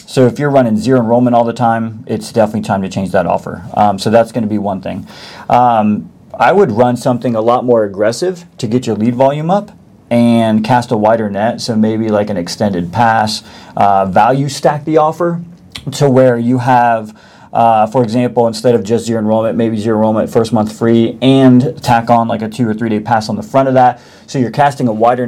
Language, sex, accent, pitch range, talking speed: English, male, American, 110-125 Hz, 220 wpm